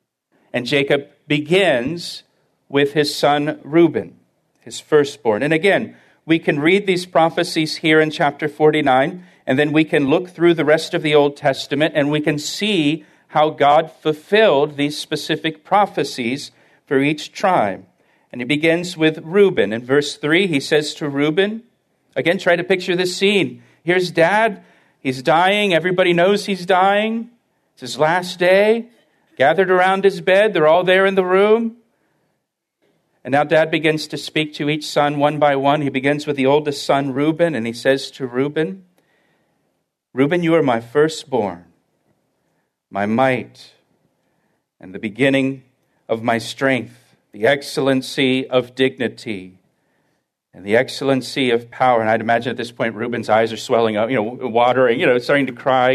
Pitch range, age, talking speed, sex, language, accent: 130-170 Hz, 50-69, 160 wpm, male, English, American